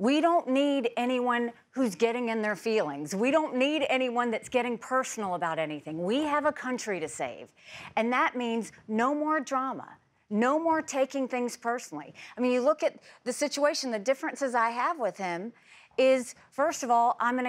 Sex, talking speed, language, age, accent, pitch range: female, 185 wpm, English, 40-59, American, 210-270 Hz